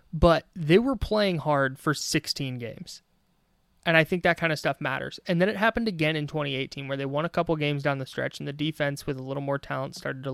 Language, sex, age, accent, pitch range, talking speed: English, male, 20-39, American, 135-160 Hz, 245 wpm